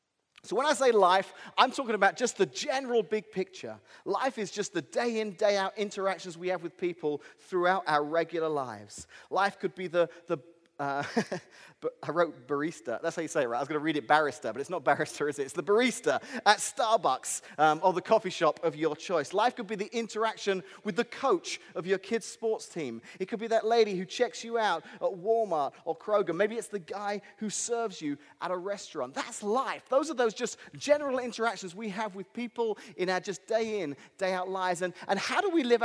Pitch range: 165-225 Hz